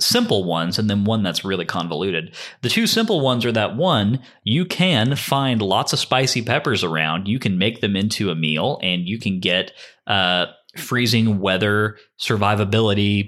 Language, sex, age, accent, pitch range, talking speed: English, male, 30-49, American, 100-135 Hz, 170 wpm